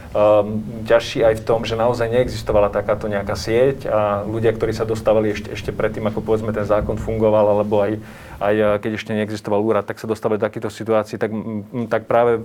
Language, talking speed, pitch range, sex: Slovak, 190 wpm, 105-115 Hz, male